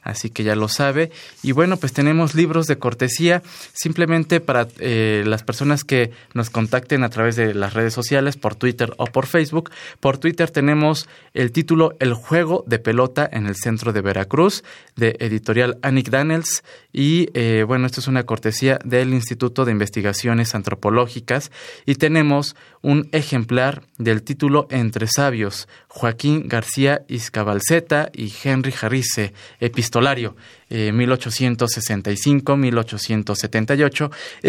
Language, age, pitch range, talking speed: Spanish, 20-39, 110-145 Hz, 135 wpm